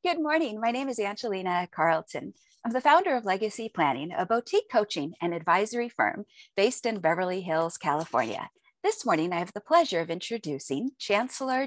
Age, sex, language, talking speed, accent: 50-69, female, English, 170 wpm, American